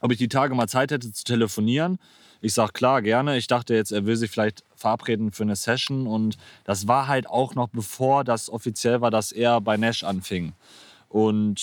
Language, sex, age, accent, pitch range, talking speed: German, male, 30-49, German, 105-125 Hz, 205 wpm